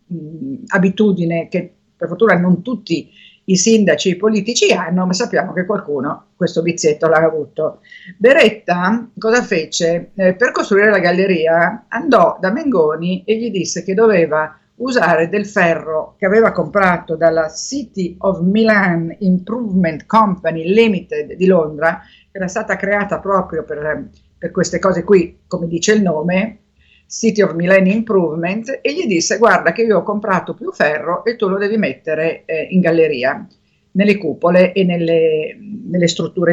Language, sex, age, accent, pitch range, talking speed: Italian, female, 50-69, native, 165-215 Hz, 155 wpm